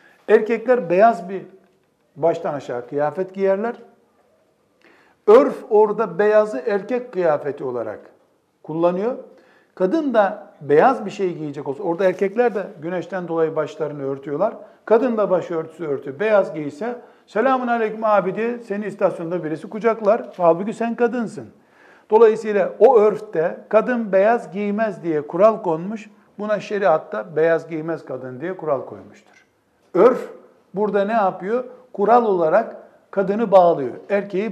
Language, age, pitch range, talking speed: Turkish, 60-79, 175-225 Hz, 125 wpm